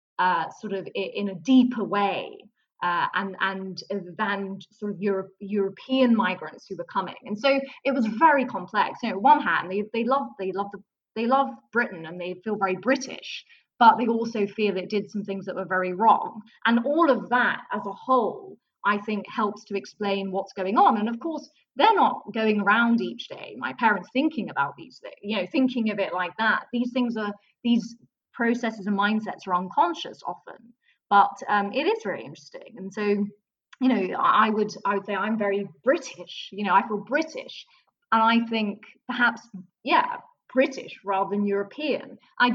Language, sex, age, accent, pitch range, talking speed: English, female, 20-39, British, 195-255 Hz, 190 wpm